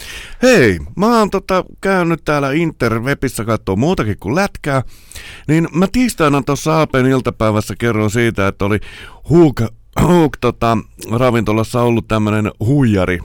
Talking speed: 125 wpm